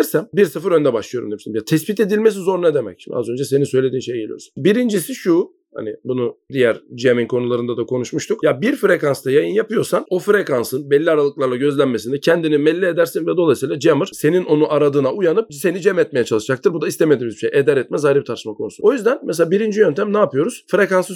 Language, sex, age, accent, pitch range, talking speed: Turkish, male, 40-59, native, 140-210 Hz, 200 wpm